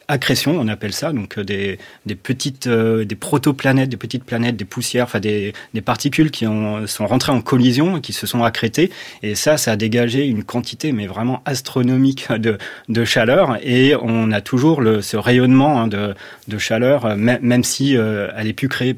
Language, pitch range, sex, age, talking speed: French, 105-125 Hz, male, 30-49, 195 wpm